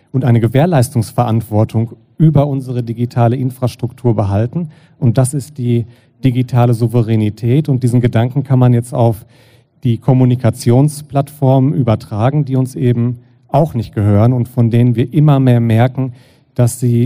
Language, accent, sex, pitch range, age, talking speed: German, German, male, 115-130 Hz, 40-59, 135 wpm